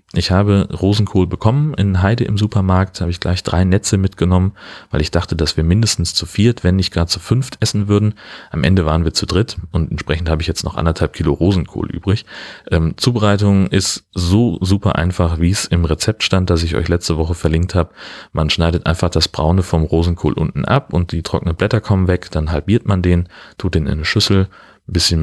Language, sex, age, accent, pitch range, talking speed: German, male, 30-49, German, 85-100 Hz, 210 wpm